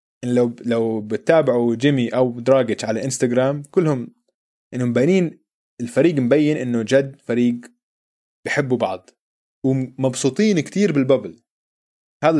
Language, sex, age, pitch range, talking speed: Arabic, male, 20-39, 120-170 Hz, 105 wpm